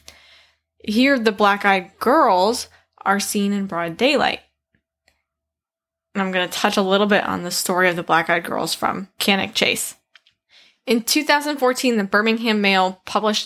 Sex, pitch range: female, 185-225 Hz